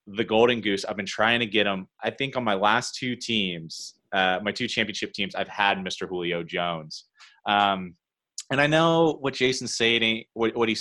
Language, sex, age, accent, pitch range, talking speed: English, male, 30-49, American, 95-130 Hz, 195 wpm